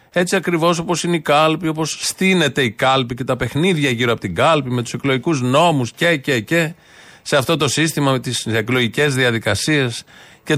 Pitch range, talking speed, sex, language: 130-165 Hz, 185 wpm, male, Greek